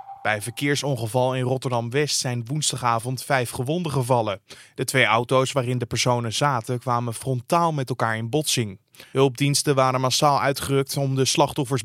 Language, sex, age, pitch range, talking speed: Dutch, male, 20-39, 130-165 Hz, 145 wpm